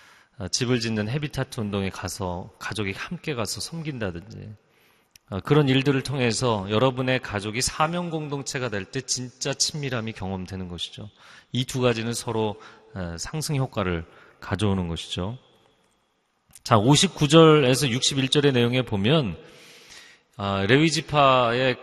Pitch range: 105-135 Hz